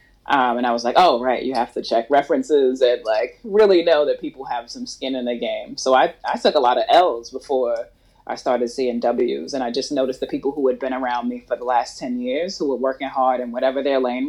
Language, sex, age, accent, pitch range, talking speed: English, female, 30-49, American, 120-150 Hz, 255 wpm